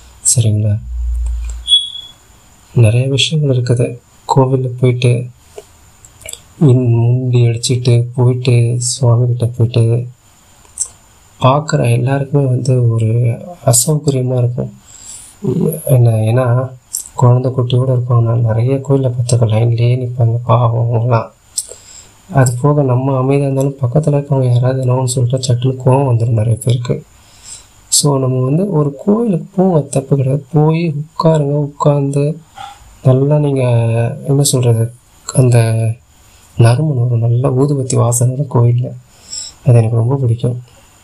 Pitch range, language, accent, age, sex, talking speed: 115-135 Hz, Tamil, native, 30-49, male, 100 wpm